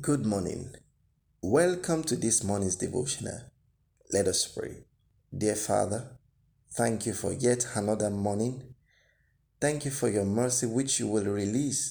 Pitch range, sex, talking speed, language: 100-130 Hz, male, 135 wpm, English